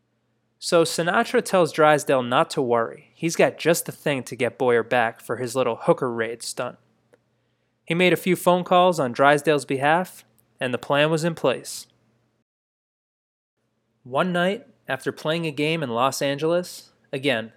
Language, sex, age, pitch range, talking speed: English, male, 20-39, 120-165 Hz, 160 wpm